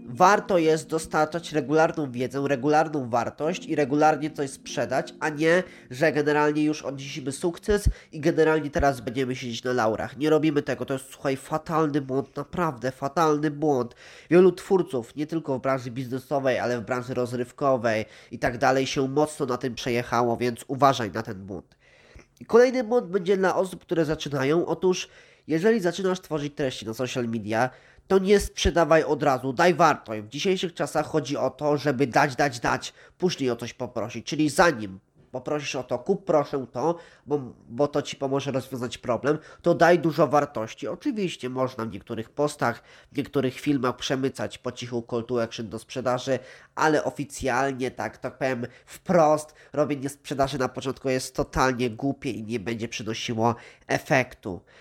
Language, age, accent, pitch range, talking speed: Polish, 20-39, native, 125-155 Hz, 165 wpm